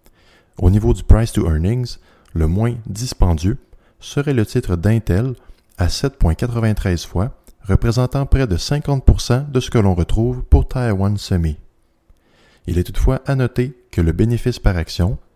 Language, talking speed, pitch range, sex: French, 150 wpm, 90-125 Hz, male